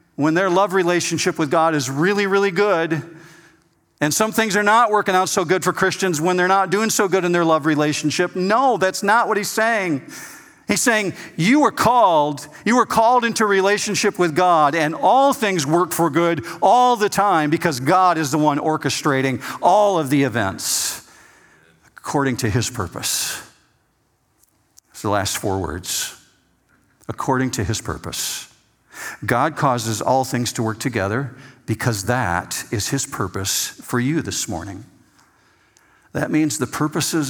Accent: American